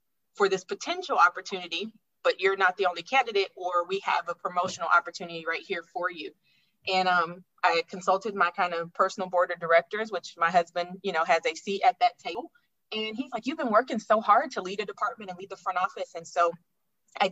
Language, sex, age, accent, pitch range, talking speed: English, female, 20-39, American, 180-225 Hz, 215 wpm